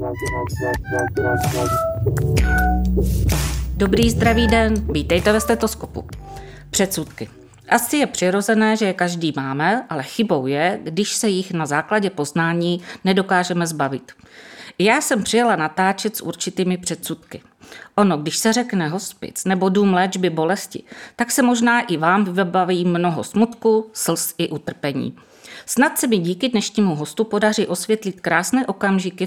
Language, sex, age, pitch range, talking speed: Czech, female, 50-69, 155-210 Hz, 125 wpm